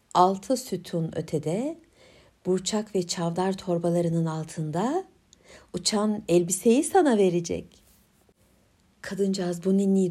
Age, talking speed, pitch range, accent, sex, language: 60-79, 90 wpm, 200-275 Hz, native, female, Turkish